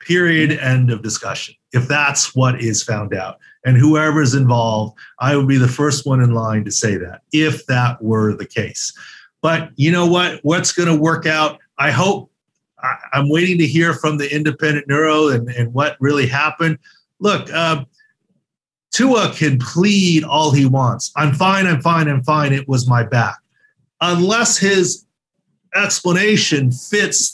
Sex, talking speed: male, 160 wpm